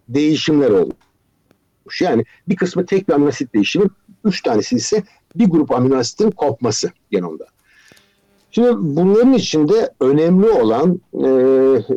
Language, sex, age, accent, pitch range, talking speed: Turkish, male, 60-79, native, 130-190 Hz, 115 wpm